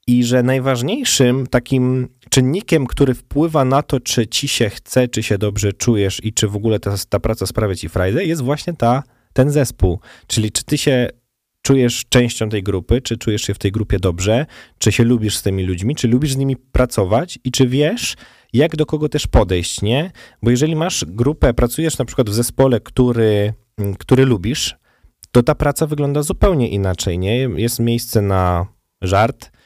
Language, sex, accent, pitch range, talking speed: Polish, male, native, 105-130 Hz, 180 wpm